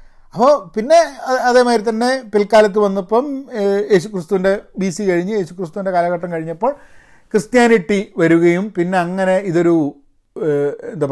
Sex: male